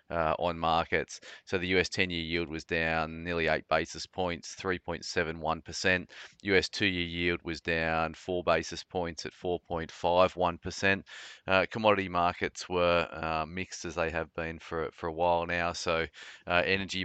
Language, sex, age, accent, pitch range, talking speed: English, male, 30-49, Australian, 80-90 Hz, 175 wpm